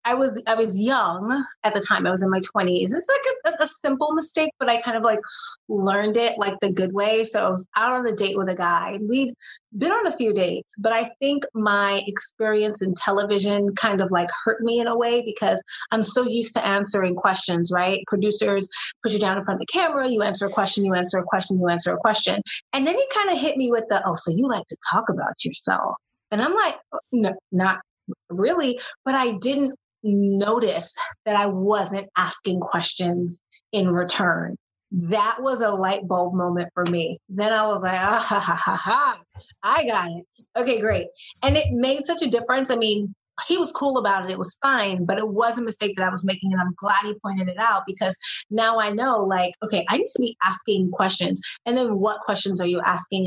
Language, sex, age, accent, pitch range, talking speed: English, female, 30-49, American, 190-240 Hz, 220 wpm